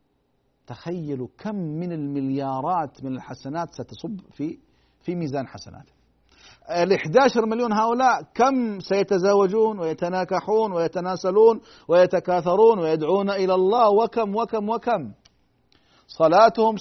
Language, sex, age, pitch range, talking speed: Arabic, male, 50-69, 150-220 Hz, 95 wpm